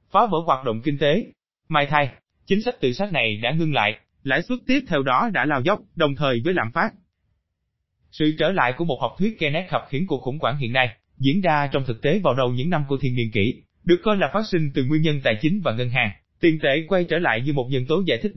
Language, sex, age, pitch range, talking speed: Vietnamese, male, 20-39, 125-180 Hz, 270 wpm